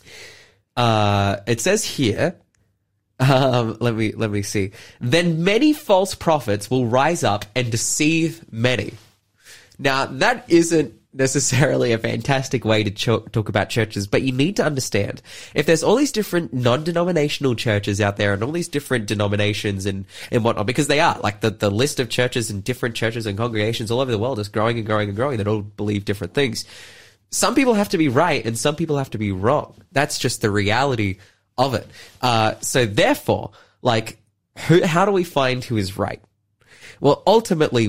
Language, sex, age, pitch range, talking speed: English, male, 20-39, 105-135 Hz, 185 wpm